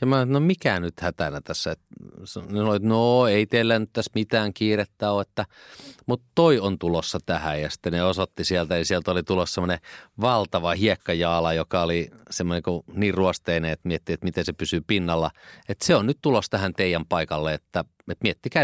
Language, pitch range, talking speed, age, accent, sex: Finnish, 80-105 Hz, 175 wpm, 30-49, native, male